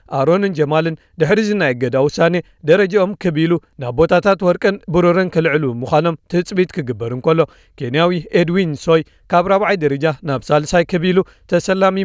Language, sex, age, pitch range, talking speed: Amharic, male, 40-59, 145-185 Hz, 120 wpm